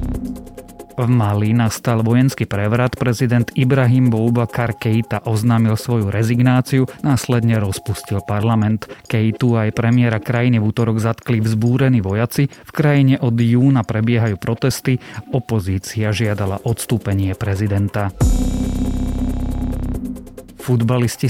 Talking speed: 100 wpm